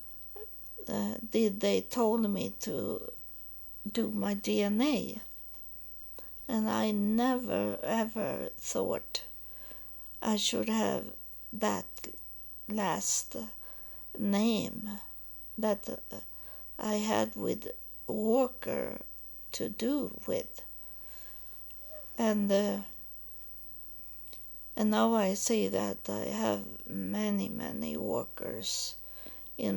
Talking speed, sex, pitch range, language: 80 wpm, female, 205-240 Hz, English